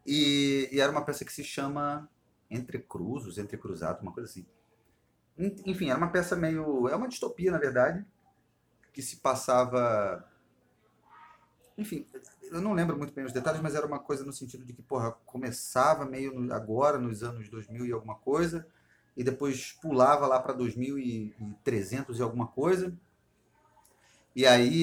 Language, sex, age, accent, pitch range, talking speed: Portuguese, male, 30-49, Brazilian, 115-145 Hz, 155 wpm